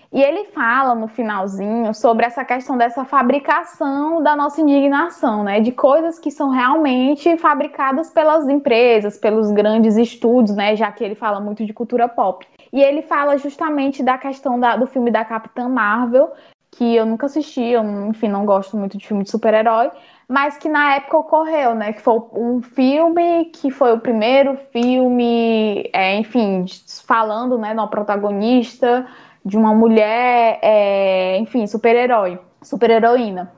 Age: 10-29